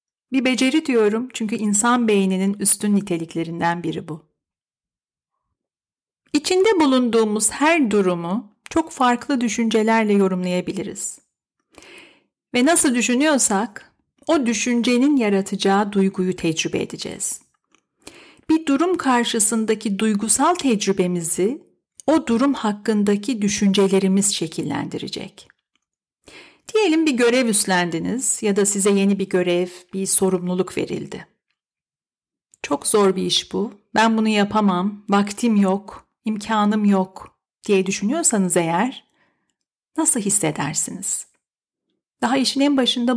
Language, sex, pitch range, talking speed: Turkish, female, 195-245 Hz, 100 wpm